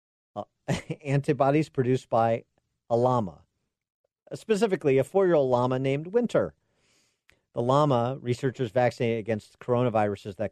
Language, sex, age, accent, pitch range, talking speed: English, male, 50-69, American, 100-135 Hz, 105 wpm